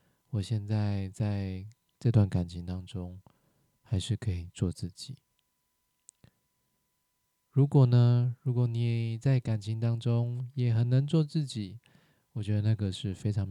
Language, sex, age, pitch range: Chinese, male, 20-39, 100-130 Hz